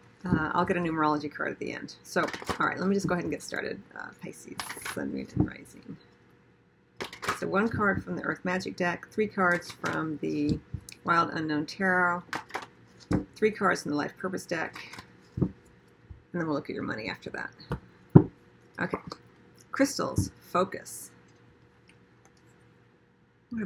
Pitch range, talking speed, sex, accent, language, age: 145-185 Hz, 155 wpm, female, American, English, 40-59